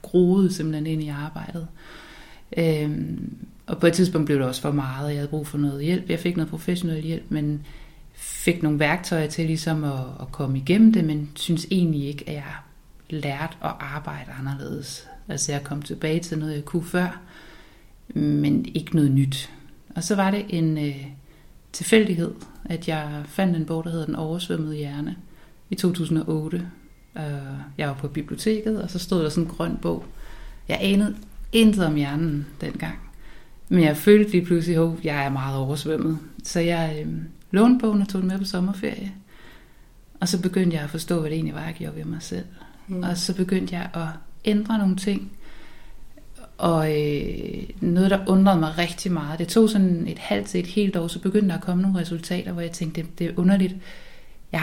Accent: native